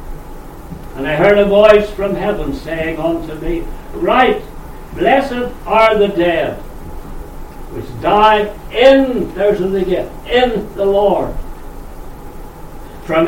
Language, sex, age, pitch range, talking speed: English, male, 60-79, 140-200 Hz, 115 wpm